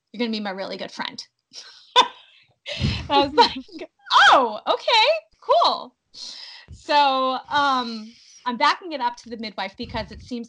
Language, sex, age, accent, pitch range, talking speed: English, female, 20-39, American, 195-255 Hz, 145 wpm